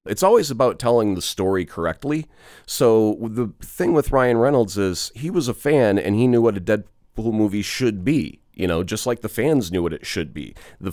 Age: 30-49